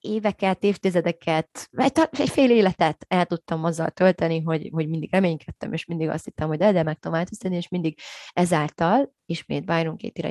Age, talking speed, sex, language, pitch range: 30-49, 155 wpm, female, Hungarian, 160-195 Hz